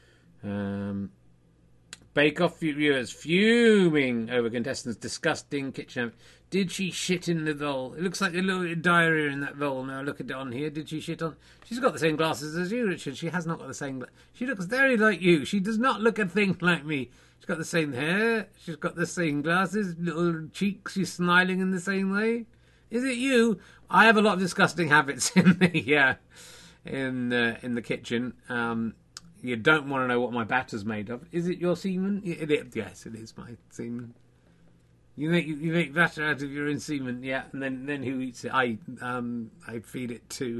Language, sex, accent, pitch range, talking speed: English, male, British, 120-180 Hz, 205 wpm